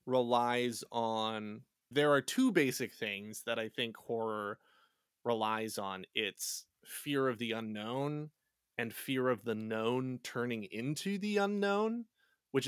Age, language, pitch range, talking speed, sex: 20-39, English, 110-145 Hz, 135 wpm, male